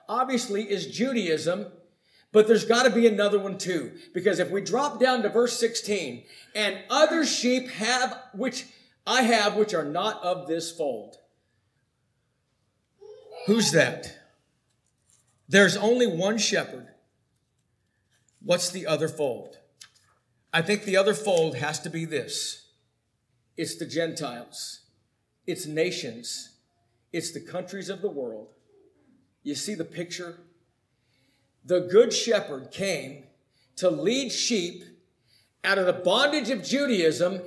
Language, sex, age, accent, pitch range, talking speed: English, male, 50-69, American, 155-230 Hz, 125 wpm